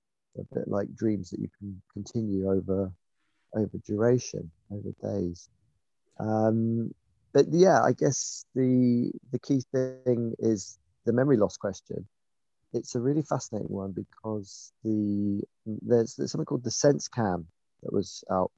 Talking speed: 140 wpm